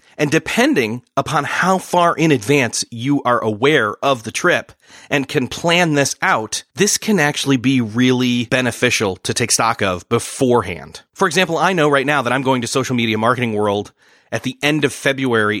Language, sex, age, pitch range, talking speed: English, male, 30-49, 115-145 Hz, 185 wpm